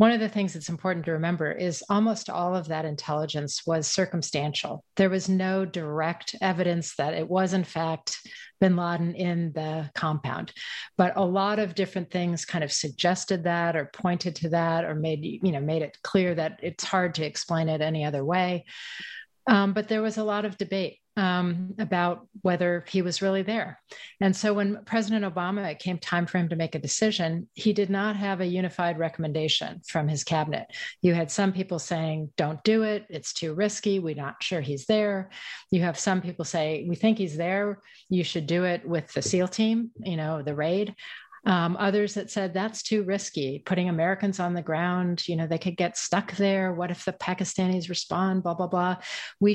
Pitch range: 165-195 Hz